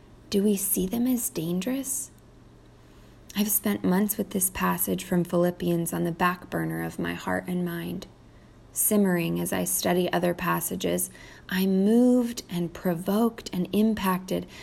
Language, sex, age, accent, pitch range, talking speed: English, female, 20-39, American, 170-210 Hz, 145 wpm